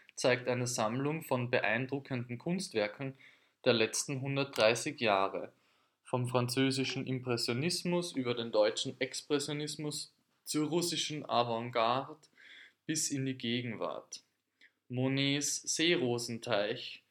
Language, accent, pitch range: German, German, 115-140 Hz